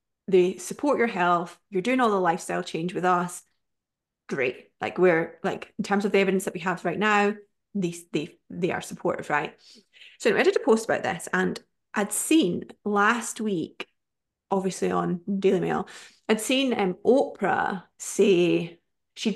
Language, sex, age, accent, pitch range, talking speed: English, female, 30-49, British, 175-210 Hz, 170 wpm